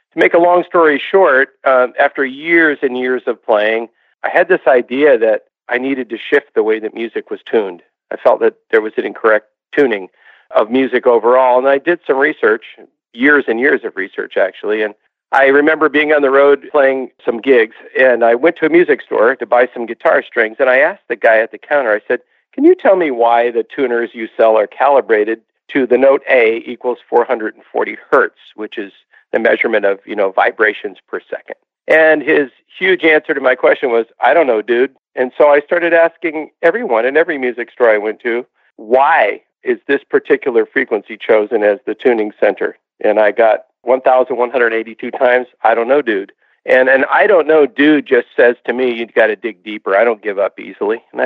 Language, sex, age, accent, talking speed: English, male, 50-69, American, 205 wpm